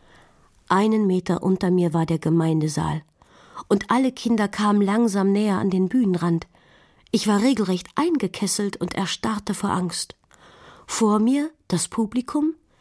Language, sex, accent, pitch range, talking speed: German, female, German, 175-235 Hz, 130 wpm